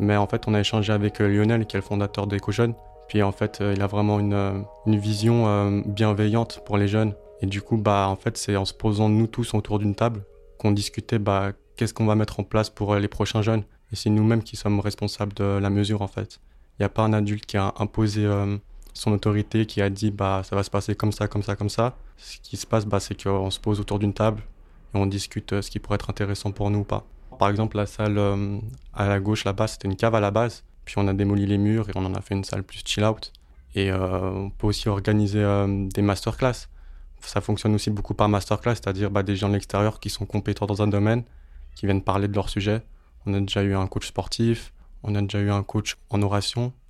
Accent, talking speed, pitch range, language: French, 250 wpm, 100-110 Hz, French